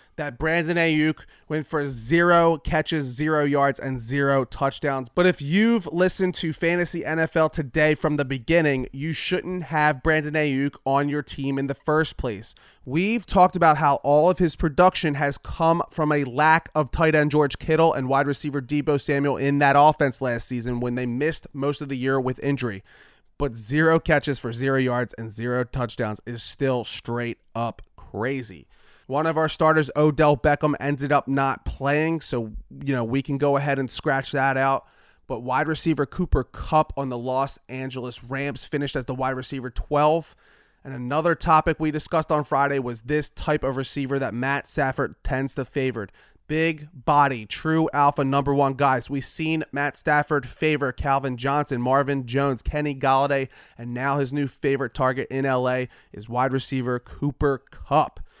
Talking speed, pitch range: 175 wpm, 130-155 Hz